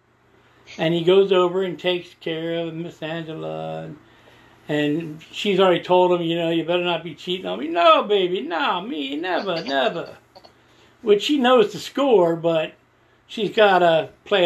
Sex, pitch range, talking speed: male, 165-255 Hz, 165 wpm